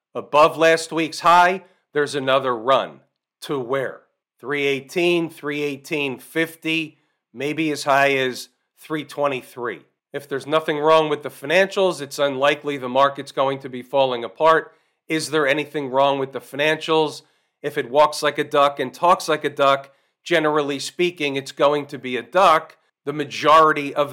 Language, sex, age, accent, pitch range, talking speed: English, male, 40-59, American, 145-180 Hz, 155 wpm